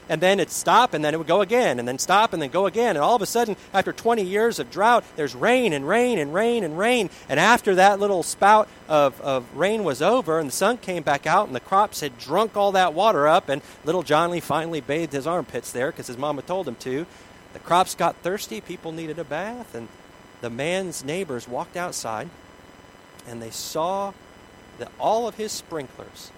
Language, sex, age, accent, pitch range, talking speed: English, male, 40-59, American, 120-180 Hz, 220 wpm